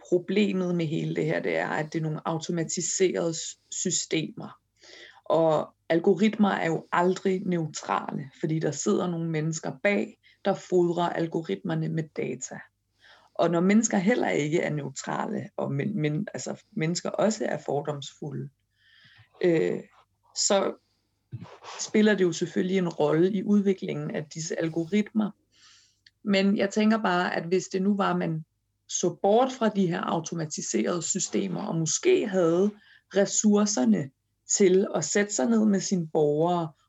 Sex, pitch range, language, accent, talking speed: female, 160-195 Hz, Danish, native, 145 wpm